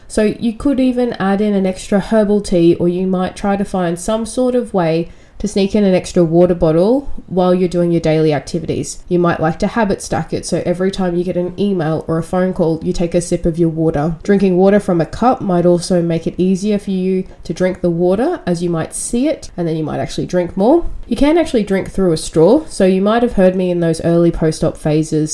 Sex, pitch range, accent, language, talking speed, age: female, 170-200 Hz, Australian, English, 245 wpm, 20-39